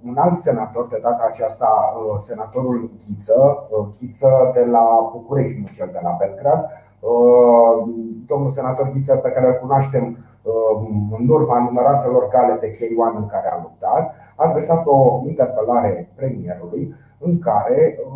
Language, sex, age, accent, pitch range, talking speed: Romanian, male, 30-49, native, 115-150 Hz, 130 wpm